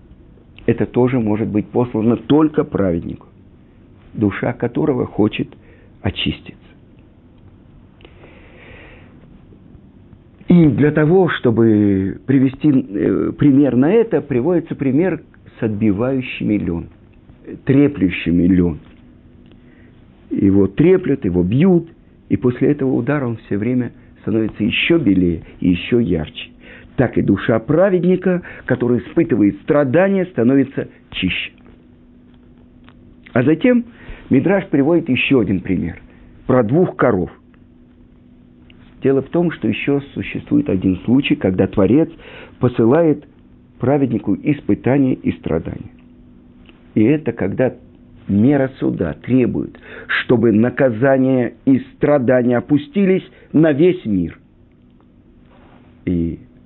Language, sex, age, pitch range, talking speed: Russian, male, 50-69, 95-145 Hz, 95 wpm